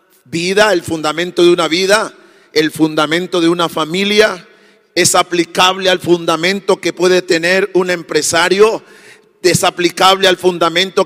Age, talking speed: 40-59, 130 wpm